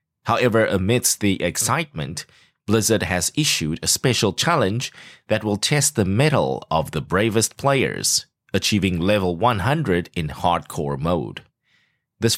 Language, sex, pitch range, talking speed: English, male, 90-125 Hz, 125 wpm